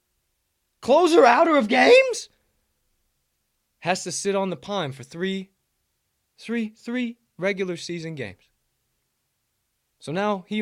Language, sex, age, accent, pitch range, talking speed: English, male, 20-39, American, 125-190 Hz, 115 wpm